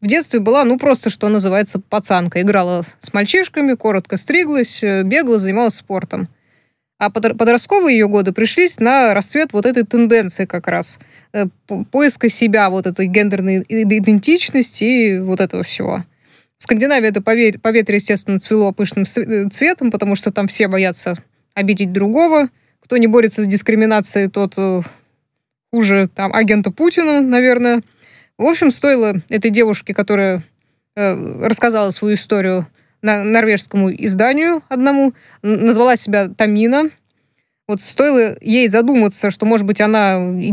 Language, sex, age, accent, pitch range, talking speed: Russian, female, 20-39, native, 195-235 Hz, 130 wpm